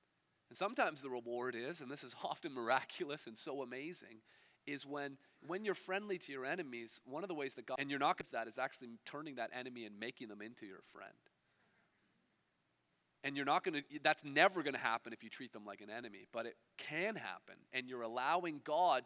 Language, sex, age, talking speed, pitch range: English, male, 40-59, 215 wpm, 130-180 Hz